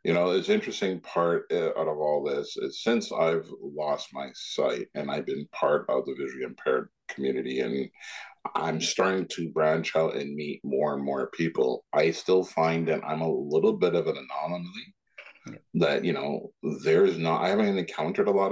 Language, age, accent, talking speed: English, 50-69, American, 190 wpm